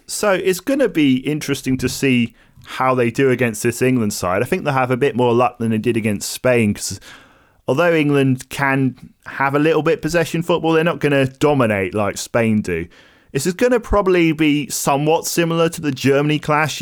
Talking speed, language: 205 wpm, English